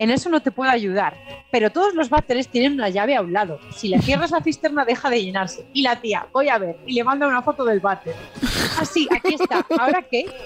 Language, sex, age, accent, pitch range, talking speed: Spanish, female, 30-49, Spanish, 215-300 Hz, 245 wpm